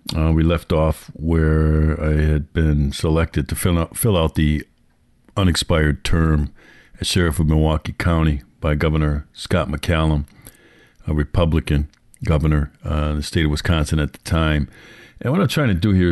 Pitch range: 75-85 Hz